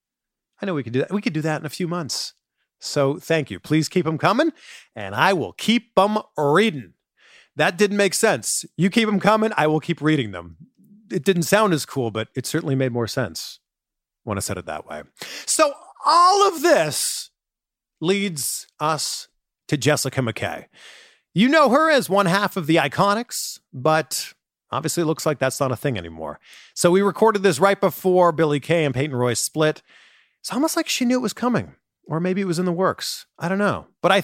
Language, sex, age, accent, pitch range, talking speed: English, male, 40-59, American, 130-195 Hz, 205 wpm